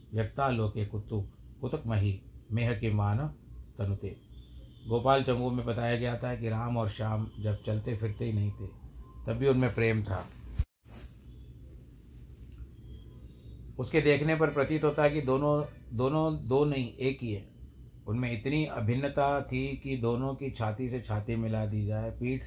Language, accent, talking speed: Hindi, native, 155 wpm